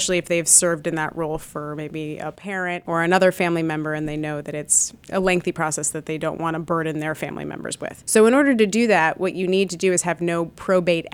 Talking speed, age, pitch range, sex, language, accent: 260 wpm, 30-49, 155-185 Hz, female, English, American